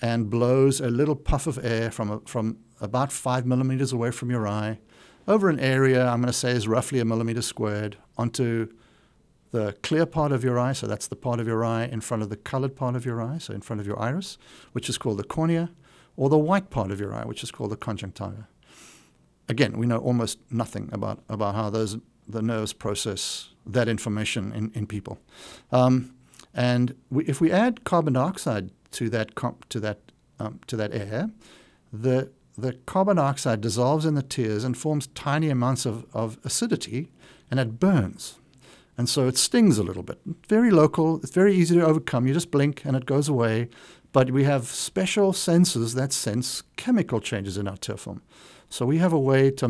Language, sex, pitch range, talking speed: French, male, 115-145 Hz, 200 wpm